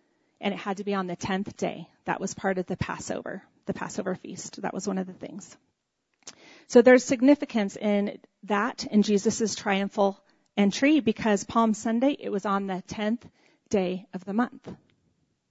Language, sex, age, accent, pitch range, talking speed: English, female, 40-59, American, 205-275 Hz, 175 wpm